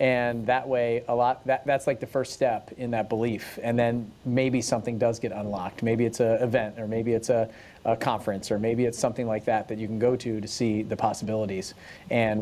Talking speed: 220 wpm